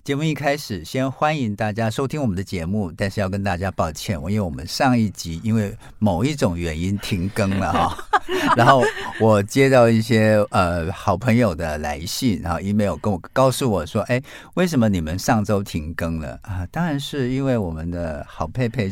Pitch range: 95-130 Hz